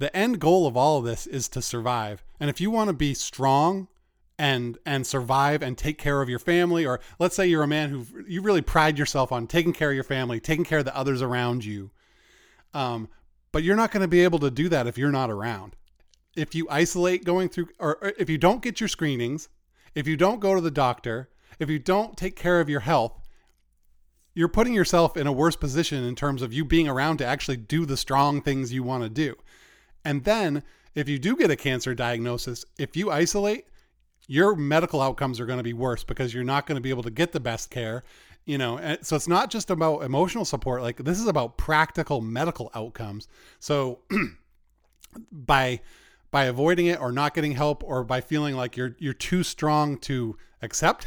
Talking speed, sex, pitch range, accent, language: 215 wpm, male, 125-170 Hz, American, English